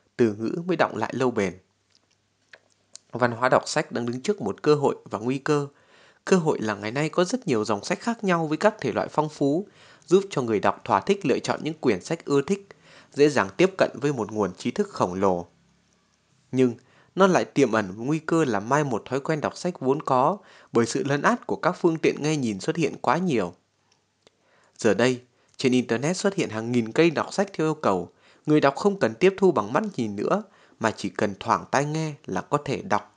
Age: 20-39